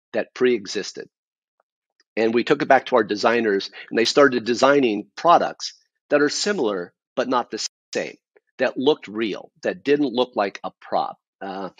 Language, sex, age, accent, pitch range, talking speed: English, male, 40-59, American, 110-145 Hz, 170 wpm